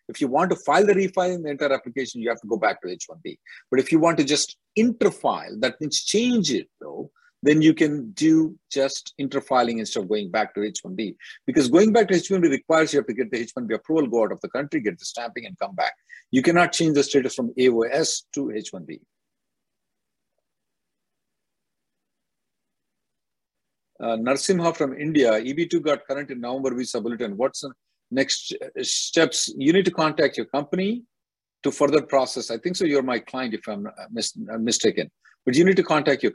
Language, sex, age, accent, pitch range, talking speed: English, male, 50-69, Indian, 115-170 Hz, 190 wpm